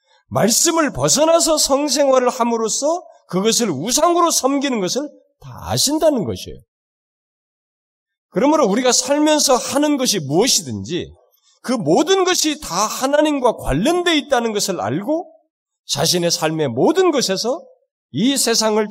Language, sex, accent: Korean, male, native